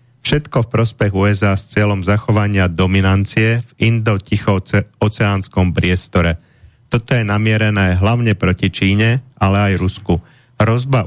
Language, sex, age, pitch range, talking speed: Slovak, male, 30-49, 95-115 Hz, 120 wpm